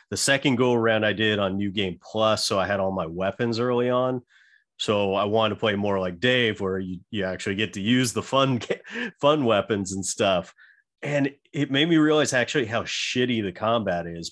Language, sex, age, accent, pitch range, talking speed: English, male, 30-49, American, 95-120 Hz, 210 wpm